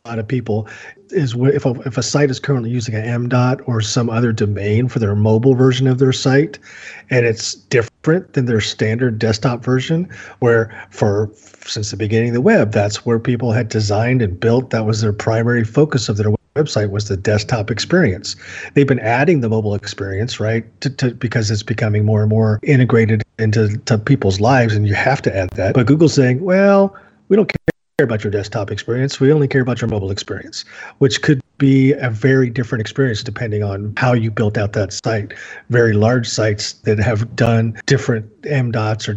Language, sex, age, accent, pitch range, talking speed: English, male, 40-59, American, 110-135 Hz, 200 wpm